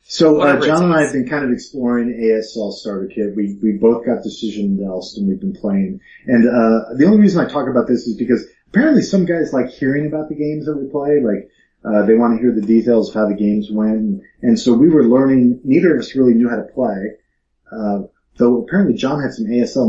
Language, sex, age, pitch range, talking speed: English, male, 30-49, 105-135 Hz, 235 wpm